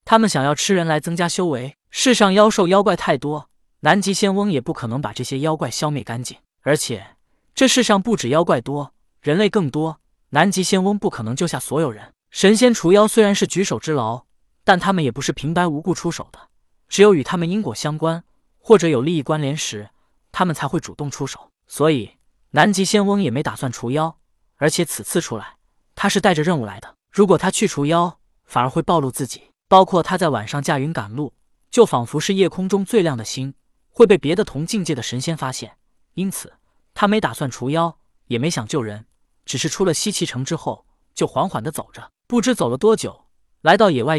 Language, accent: Chinese, native